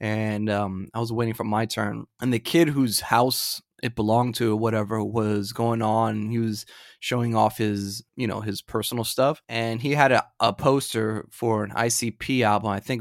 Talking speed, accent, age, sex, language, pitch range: 190 wpm, American, 20-39, male, English, 110-130 Hz